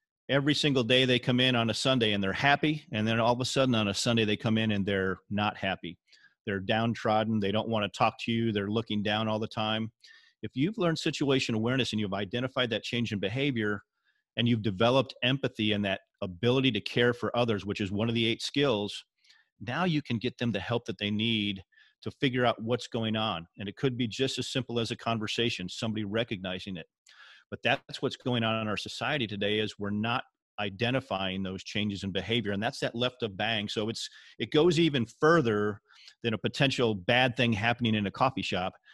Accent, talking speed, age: American, 215 wpm, 40-59